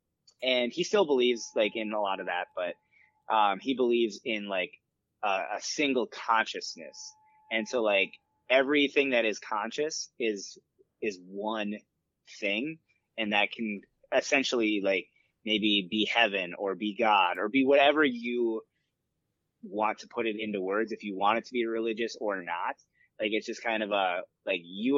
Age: 20-39